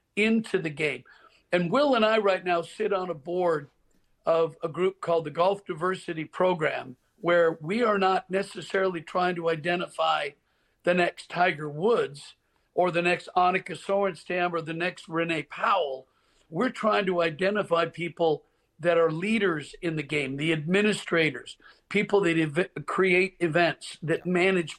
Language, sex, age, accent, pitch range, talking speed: English, male, 50-69, American, 165-200 Hz, 150 wpm